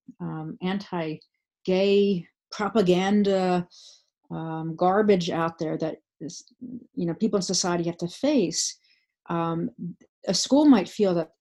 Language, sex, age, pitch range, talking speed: English, female, 40-59, 170-205 Hz, 115 wpm